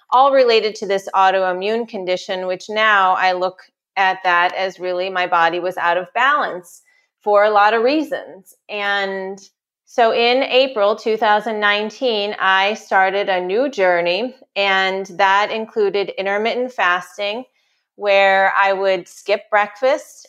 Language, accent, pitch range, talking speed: English, American, 190-235 Hz, 135 wpm